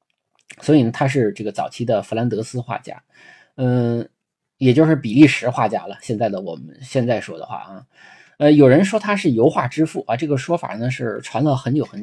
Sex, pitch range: male, 120-150 Hz